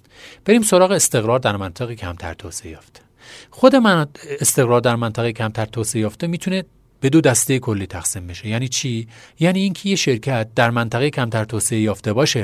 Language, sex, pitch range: Persian, male, 105-145 Hz